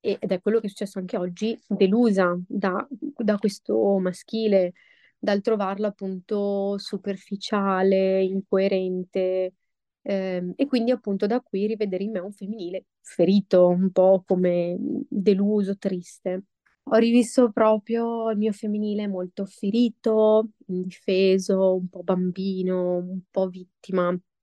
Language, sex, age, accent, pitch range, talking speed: Italian, female, 20-39, native, 190-220 Hz, 125 wpm